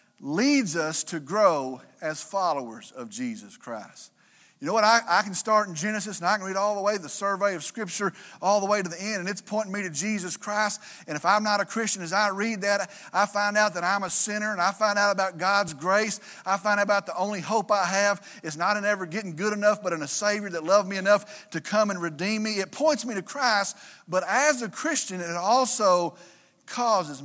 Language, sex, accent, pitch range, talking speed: English, male, American, 180-225 Hz, 235 wpm